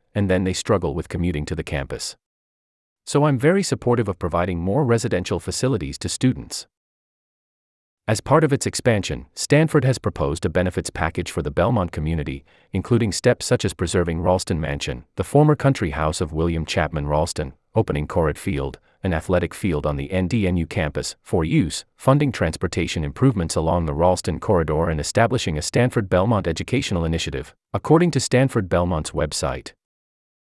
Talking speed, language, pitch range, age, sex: 155 wpm, English, 80-120 Hz, 30-49, male